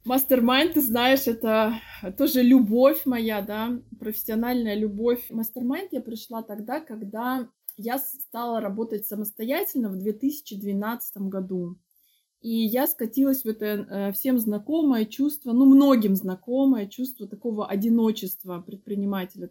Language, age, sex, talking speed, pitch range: Russian, 20-39, female, 115 wpm, 215-270 Hz